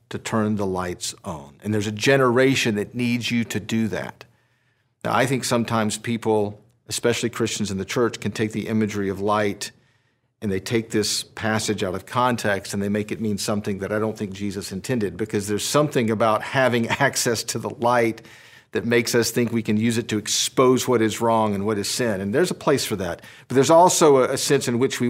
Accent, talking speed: American, 220 wpm